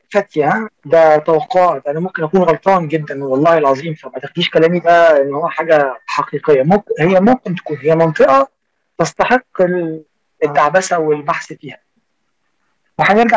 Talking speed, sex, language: 135 wpm, male, Arabic